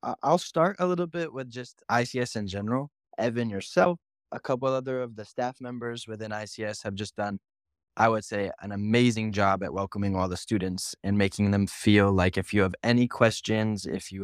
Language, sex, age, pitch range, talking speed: English, male, 20-39, 100-120 Hz, 200 wpm